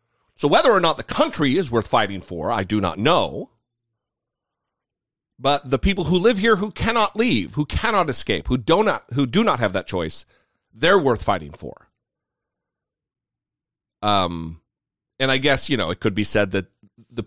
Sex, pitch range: male, 100-135 Hz